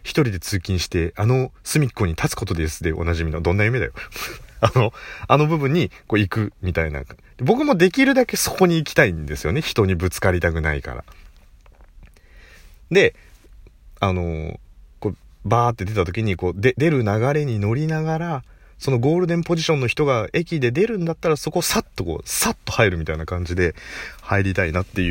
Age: 30-49